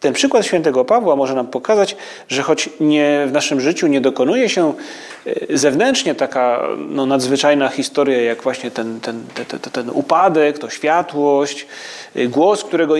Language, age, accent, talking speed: Polish, 30-49, native, 135 wpm